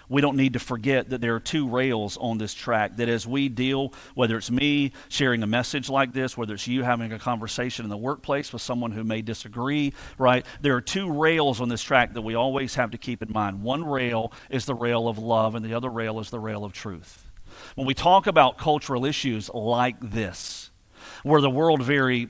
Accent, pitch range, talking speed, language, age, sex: American, 115-140 Hz, 225 wpm, English, 50-69, male